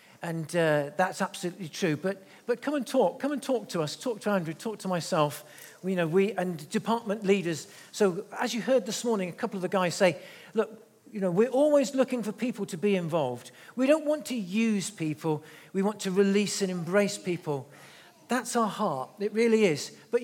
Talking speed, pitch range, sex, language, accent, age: 210 wpm, 165-220 Hz, male, English, British, 50-69